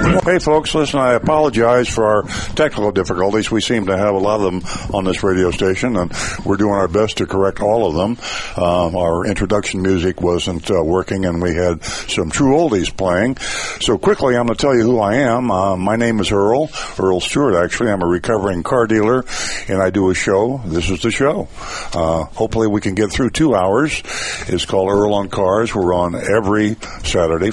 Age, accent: 60-79, American